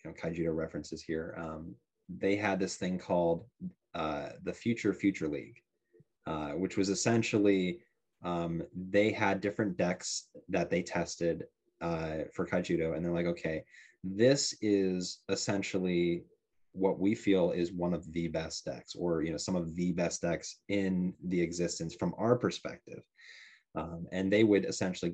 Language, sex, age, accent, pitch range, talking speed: English, male, 30-49, American, 85-100 Hz, 160 wpm